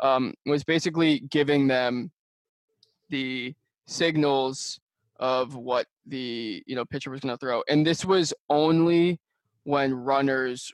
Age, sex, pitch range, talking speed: 20-39, male, 130-150 Hz, 130 wpm